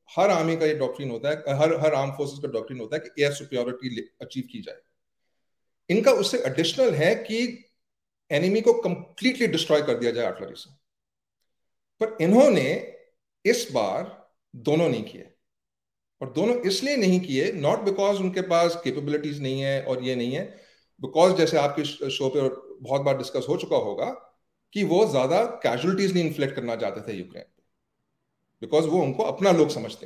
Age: 40-59